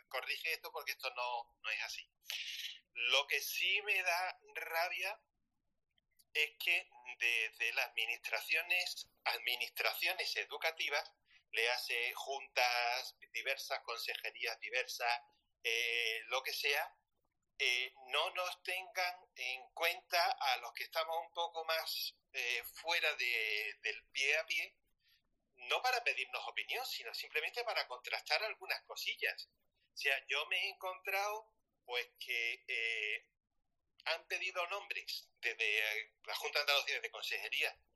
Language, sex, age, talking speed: Spanish, male, 40-59, 130 wpm